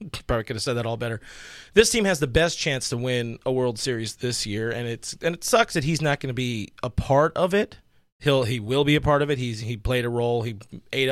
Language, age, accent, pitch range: English, 30-49, American, 120-145 Hz